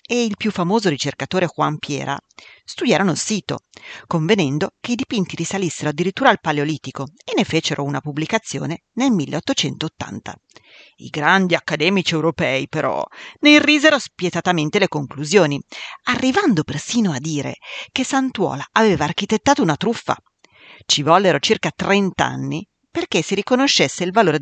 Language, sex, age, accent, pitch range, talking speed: Italian, female, 40-59, native, 150-210 Hz, 135 wpm